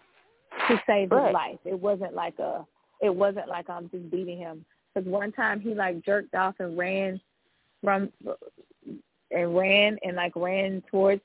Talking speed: 165 wpm